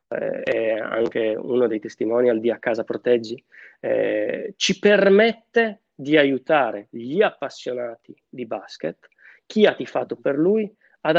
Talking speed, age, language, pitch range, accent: 135 wpm, 20-39, Italian, 120-160 Hz, native